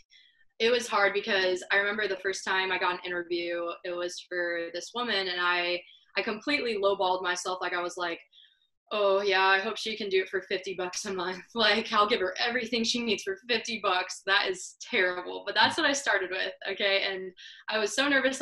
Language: English